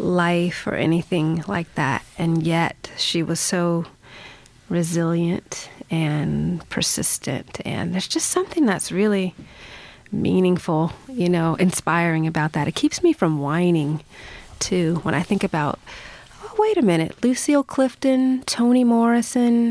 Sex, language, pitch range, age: female, English, 165-210 Hz, 30-49